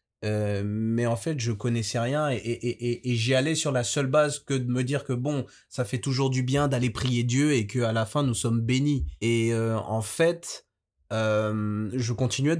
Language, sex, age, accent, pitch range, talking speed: French, male, 20-39, French, 105-125 Hz, 215 wpm